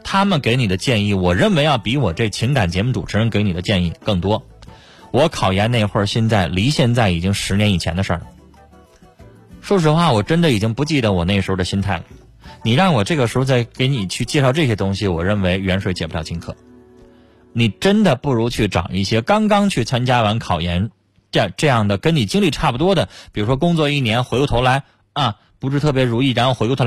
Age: 20-39